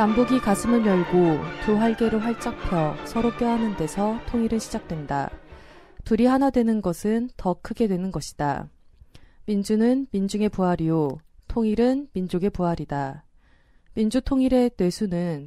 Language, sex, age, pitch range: Korean, female, 20-39, 165-230 Hz